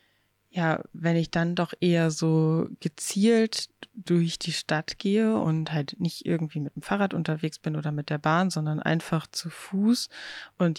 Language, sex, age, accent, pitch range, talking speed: German, female, 20-39, German, 155-170 Hz, 165 wpm